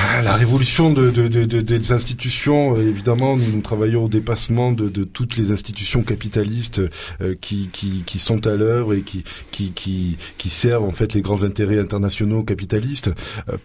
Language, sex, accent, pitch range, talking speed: French, male, French, 105-125 Hz, 180 wpm